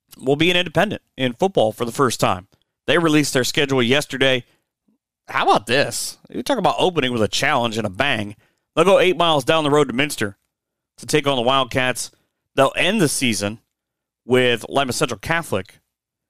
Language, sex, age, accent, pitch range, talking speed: English, male, 30-49, American, 115-140 Hz, 185 wpm